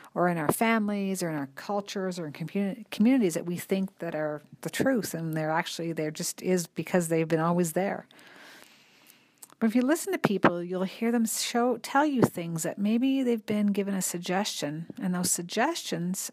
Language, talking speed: English, 195 wpm